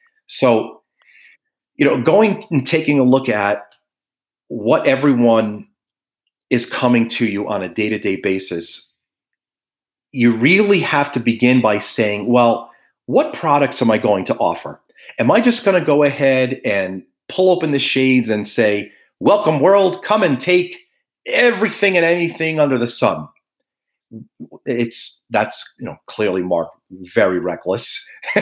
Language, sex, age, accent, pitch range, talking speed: English, male, 40-59, American, 105-145 Hz, 140 wpm